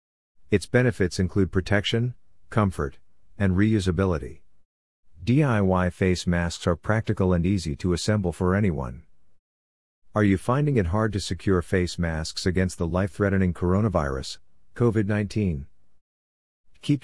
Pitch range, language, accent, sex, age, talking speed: 80-100 Hz, English, American, male, 50-69, 115 wpm